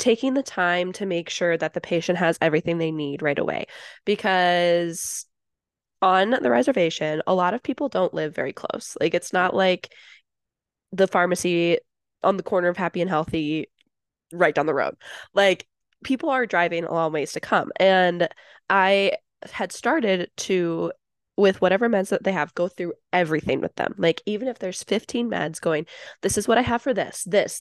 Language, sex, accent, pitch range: English, female, American, 170-215 Hz